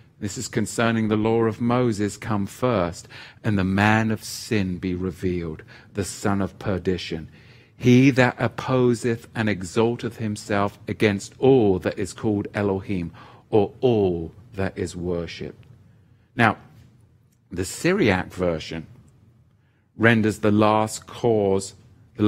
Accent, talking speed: British, 120 wpm